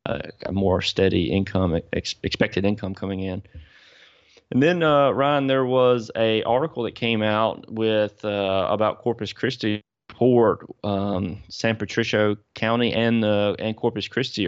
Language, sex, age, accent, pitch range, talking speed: English, male, 30-49, American, 95-110 Hz, 150 wpm